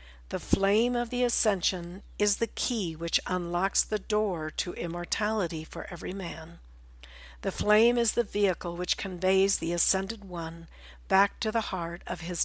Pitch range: 165-210 Hz